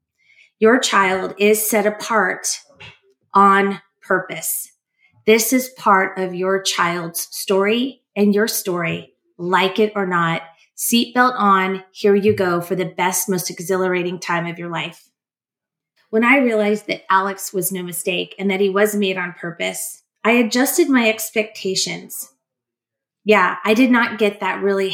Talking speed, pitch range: 145 wpm, 185-220 Hz